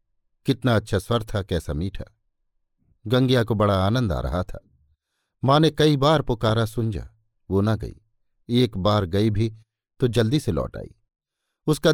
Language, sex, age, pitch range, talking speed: Hindi, male, 50-69, 100-125 Hz, 160 wpm